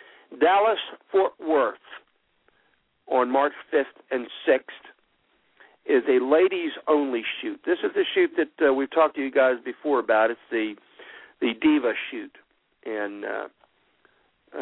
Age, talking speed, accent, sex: 50-69, 130 wpm, American, male